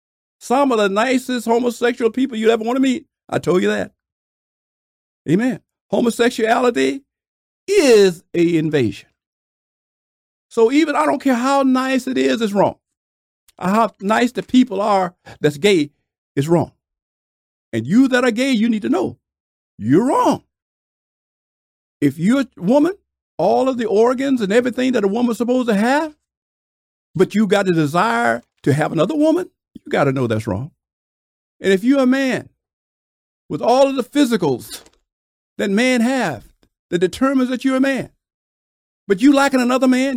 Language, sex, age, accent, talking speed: English, male, 50-69, American, 160 wpm